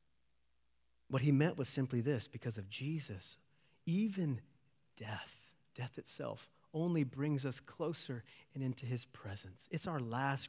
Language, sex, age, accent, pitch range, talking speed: English, male, 40-59, American, 115-150 Hz, 135 wpm